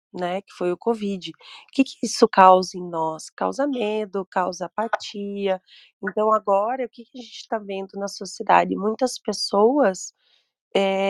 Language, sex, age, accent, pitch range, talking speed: Portuguese, female, 20-39, Brazilian, 190-230 Hz, 160 wpm